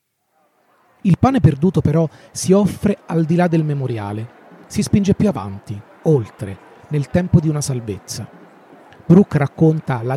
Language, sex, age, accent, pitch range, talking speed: Italian, male, 30-49, native, 120-155 Hz, 140 wpm